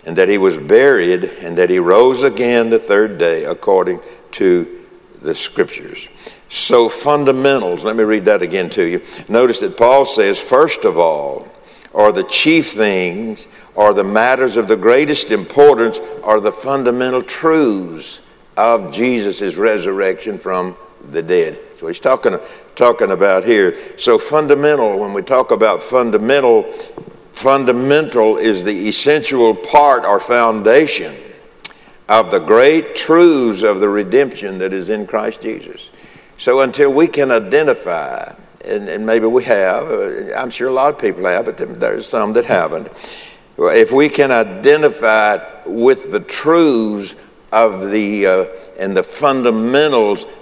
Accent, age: American, 60-79